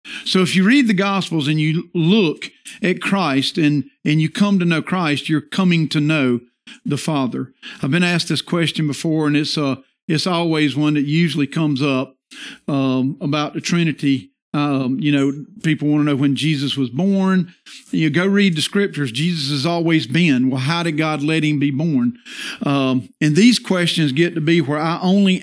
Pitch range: 145-190 Hz